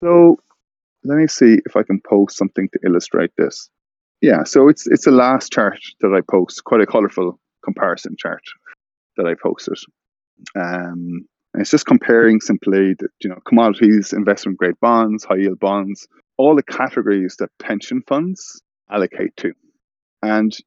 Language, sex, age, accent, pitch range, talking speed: English, male, 20-39, Irish, 95-115 Hz, 155 wpm